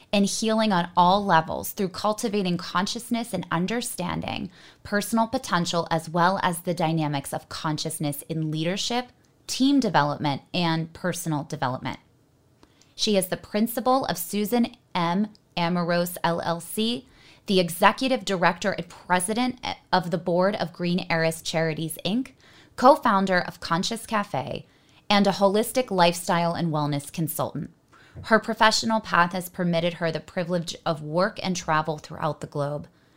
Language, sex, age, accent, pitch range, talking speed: English, female, 20-39, American, 165-205 Hz, 135 wpm